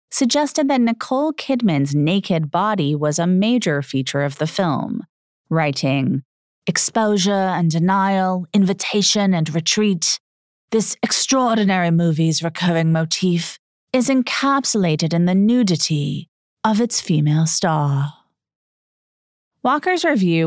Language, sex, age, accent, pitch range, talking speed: English, female, 30-49, American, 155-220 Hz, 105 wpm